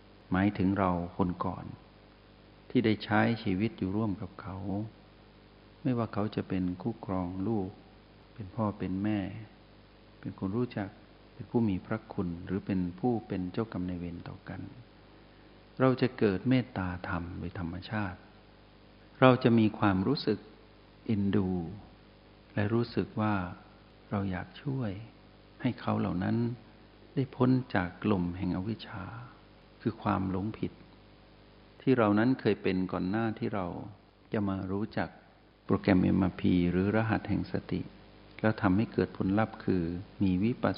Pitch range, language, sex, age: 95-110 Hz, Thai, male, 60-79